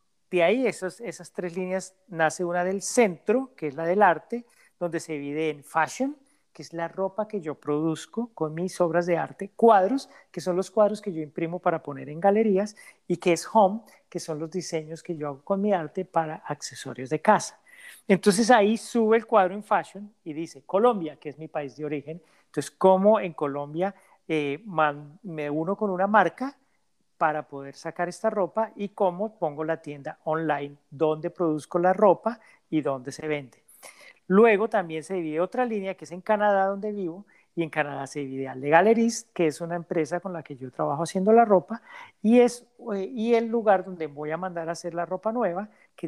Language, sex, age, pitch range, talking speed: Spanish, male, 40-59, 155-210 Hz, 205 wpm